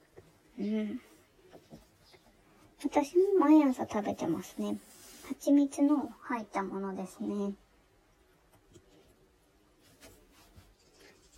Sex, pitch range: male, 205-300 Hz